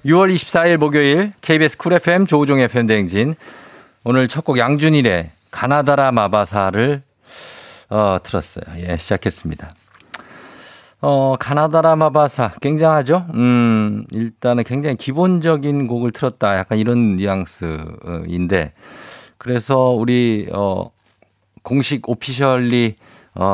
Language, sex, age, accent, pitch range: Korean, male, 50-69, native, 100-145 Hz